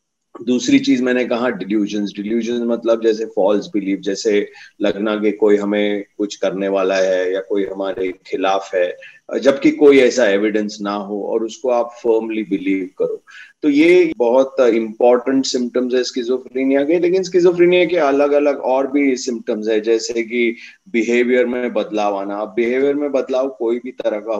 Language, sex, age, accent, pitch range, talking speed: Hindi, male, 30-49, native, 105-145 Hz, 165 wpm